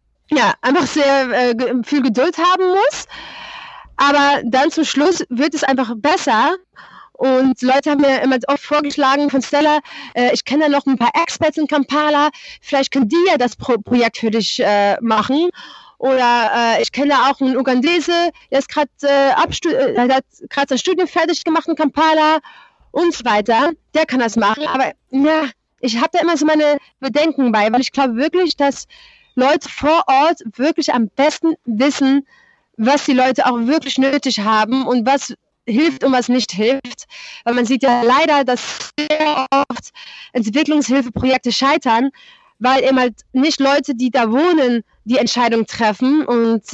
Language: German